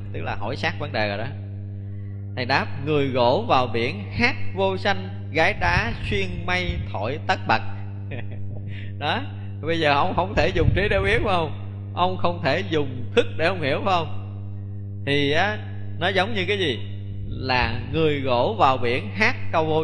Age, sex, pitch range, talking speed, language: 20-39, male, 100-115 Hz, 180 wpm, Vietnamese